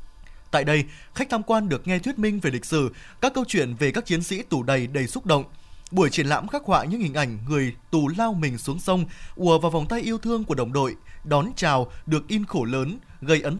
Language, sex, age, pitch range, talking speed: Vietnamese, male, 20-39, 145-210 Hz, 245 wpm